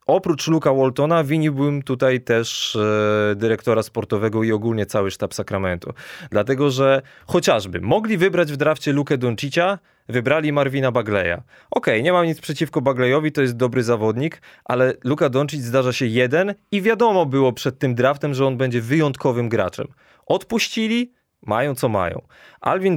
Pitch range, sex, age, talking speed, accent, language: 115-150 Hz, male, 20-39, 155 wpm, native, Polish